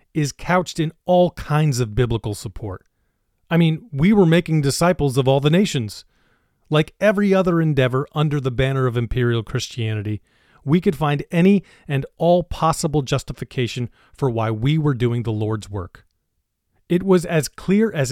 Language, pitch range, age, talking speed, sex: English, 120-165 Hz, 40-59, 160 wpm, male